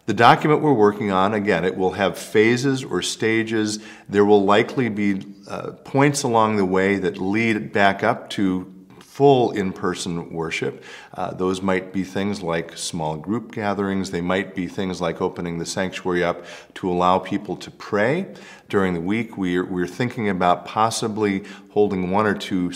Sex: male